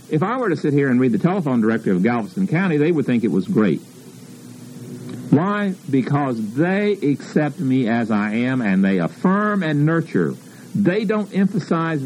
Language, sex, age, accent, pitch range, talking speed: English, male, 50-69, American, 105-160 Hz, 180 wpm